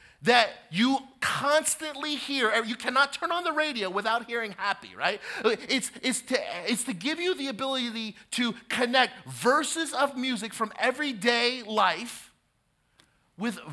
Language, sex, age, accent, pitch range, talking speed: English, male, 40-59, American, 185-255 Hz, 140 wpm